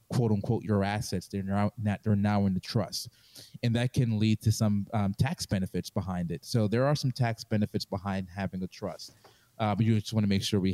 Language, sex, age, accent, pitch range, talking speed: English, male, 30-49, American, 95-115 Hz, 235 wpm